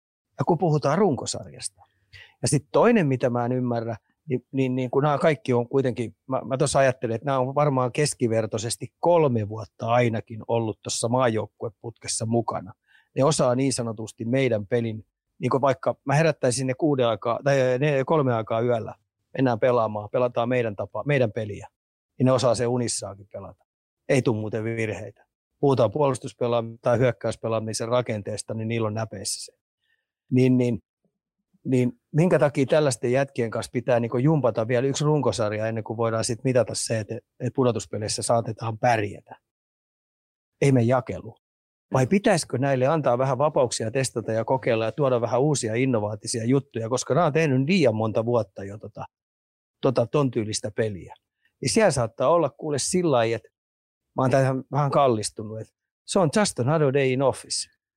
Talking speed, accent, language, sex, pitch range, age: 160 wpm, native, Finnish, male, 110-135 Hz, 30-49